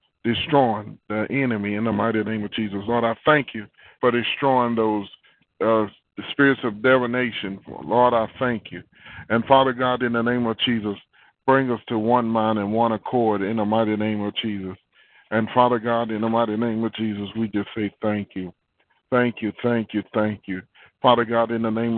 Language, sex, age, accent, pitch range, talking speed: English, male, 30-49, American, 105-130 Hz, 195 wpm